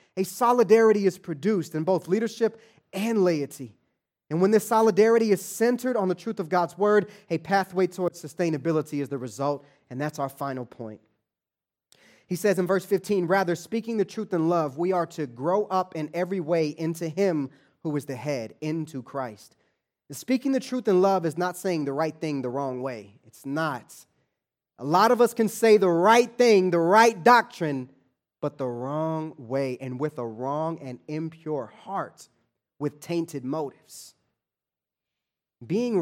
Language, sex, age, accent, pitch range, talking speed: English, male, 20-39, American, 145-195 Hz, 170 wpm